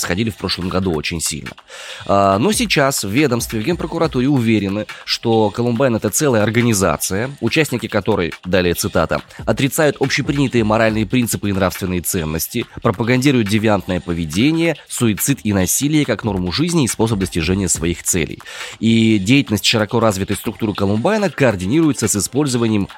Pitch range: 90-125 Hz